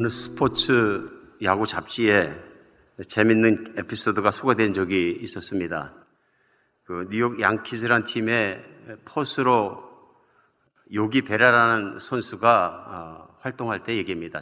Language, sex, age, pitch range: Korean, male, 50-69, 105-130 Hz